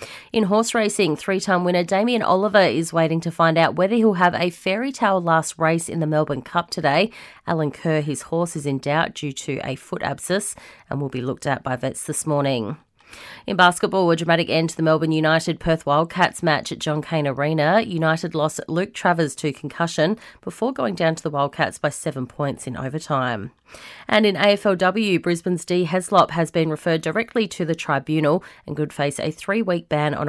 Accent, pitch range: Australian, 145-180 Hz